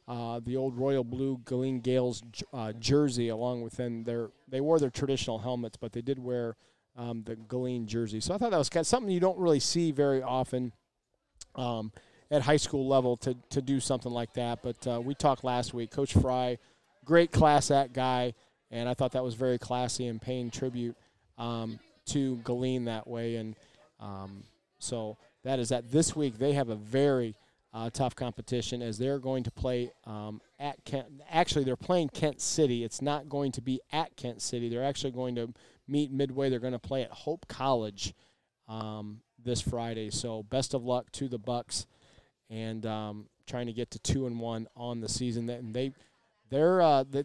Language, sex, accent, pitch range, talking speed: English, male, American, 115-140 Hz, 195 wpm